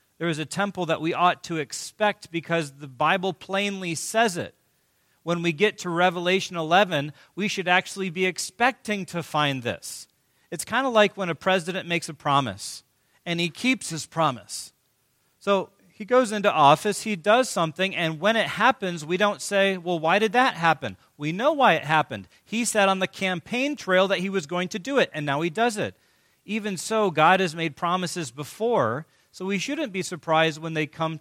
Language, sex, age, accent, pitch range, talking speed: English, male, 40-59, American, 135-190 Hz, 195 wpm